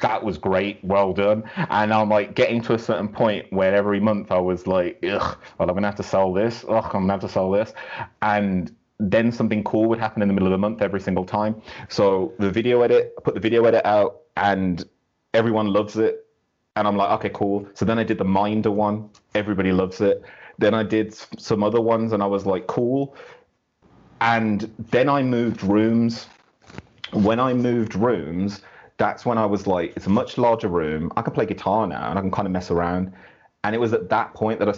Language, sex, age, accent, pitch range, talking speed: English, male, 30-49, British, 100-120 Hz, 225 wpm